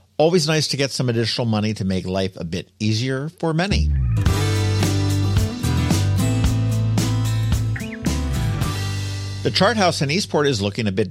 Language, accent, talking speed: English, American, 130 wpm